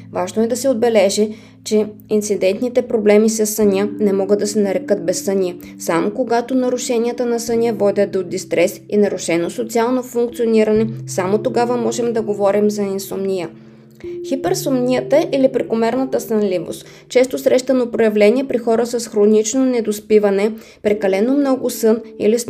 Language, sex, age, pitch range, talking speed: Bulgarian, female, 20-39, 205-245 Hz, 140 wpm